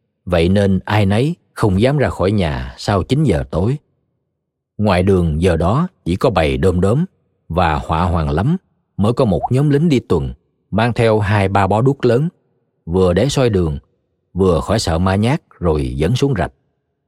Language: Vietnamese